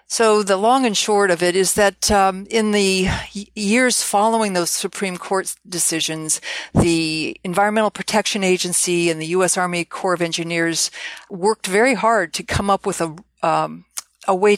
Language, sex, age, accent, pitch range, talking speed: English, female, 50-69, American, 165-200 Hz, 165 wpm